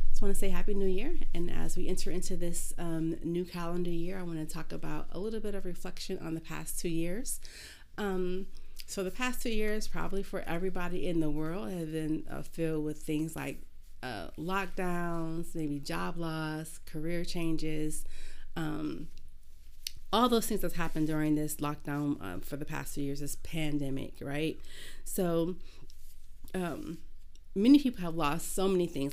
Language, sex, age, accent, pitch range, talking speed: English, female, 30-49, American, 145-180 Hz, 175 wpm